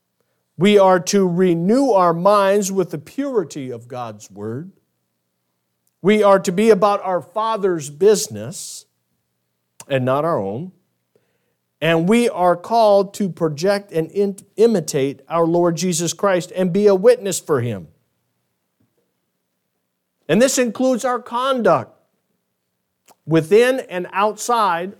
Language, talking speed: English, 120 wpm